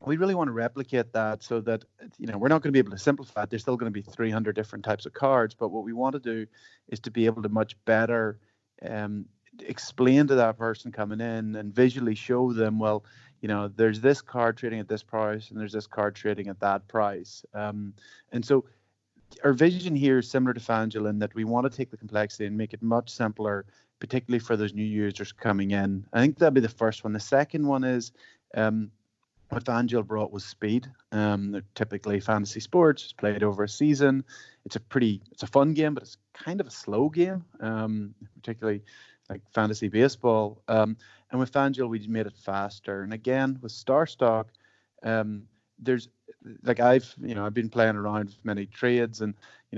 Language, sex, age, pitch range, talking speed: English, male, 30-49, 105-125 Hz, 210 wpm